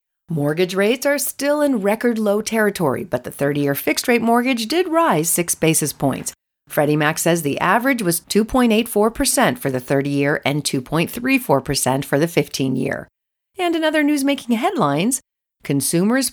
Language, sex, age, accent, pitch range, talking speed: English, female, 40-59, American, 145-220 Hz, 145 wpm